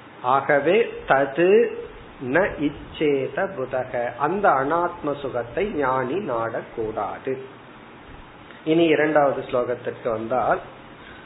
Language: Tamil